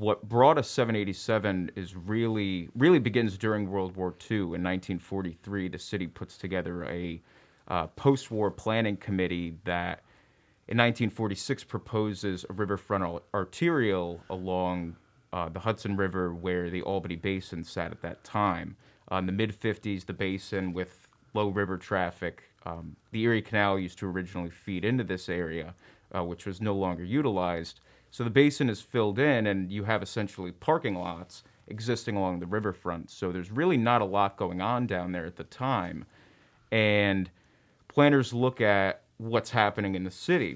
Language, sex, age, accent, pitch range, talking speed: English, male, 30-49, American, 90-105 Hz, 160 wpm